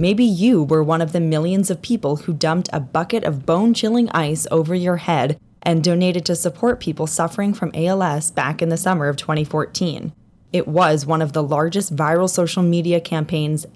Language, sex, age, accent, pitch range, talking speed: English, female, 10-29, American, 150-175 Hz, 190 wpm